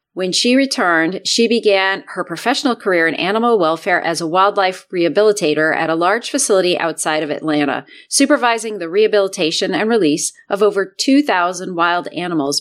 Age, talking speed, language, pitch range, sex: 30-49, 150 wpm, English, 170-230 Hz, female